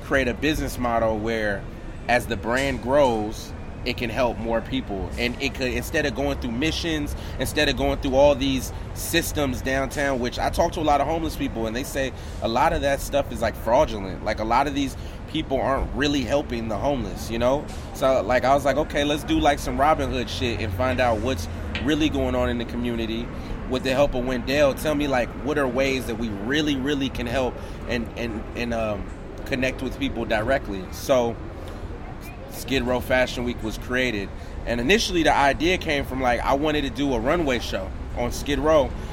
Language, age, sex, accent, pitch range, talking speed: English, 30-49, male, American, 105-135 Hz, 205 wpm